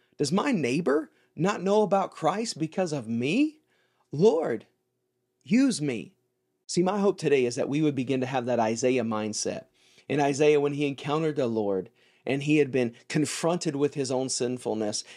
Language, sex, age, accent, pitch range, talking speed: English, male, 40-59, American, 125-165 Hz, 170 wpm